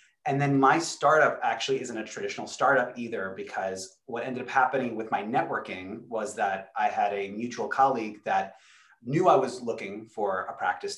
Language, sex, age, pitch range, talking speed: English, male, 30-49, 110-140 Hz, 180 wpm